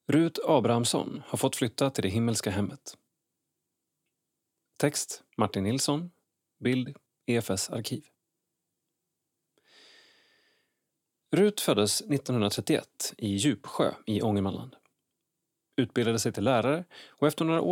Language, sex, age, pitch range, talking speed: Swedish, male, 30-49, 105-145 Hz, 95 wpm